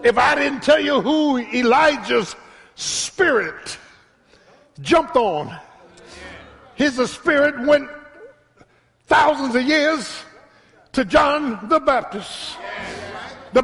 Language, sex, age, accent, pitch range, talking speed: English, male, 60-79, American, 240-300 Hz, 90 wpm